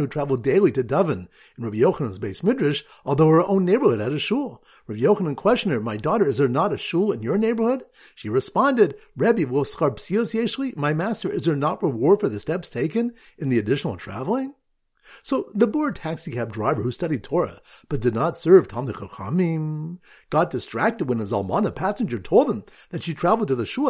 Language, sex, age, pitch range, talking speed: English, male, 50-69, 140-215 Hz, 190 wpm